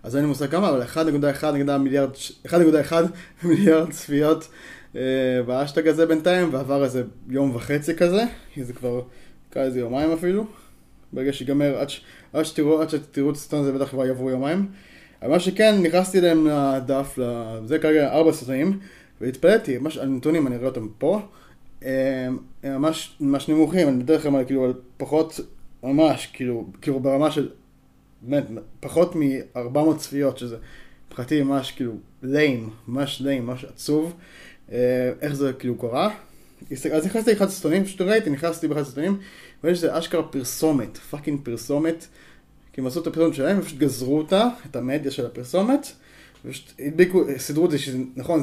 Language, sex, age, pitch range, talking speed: Hebrew, male, 20-39, 130-160 Hz, 145 wpm